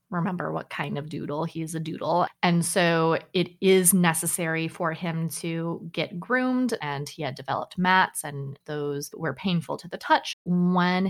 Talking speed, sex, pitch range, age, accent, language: 170 wpm, female, 160-185 Hz, 20-39, American, English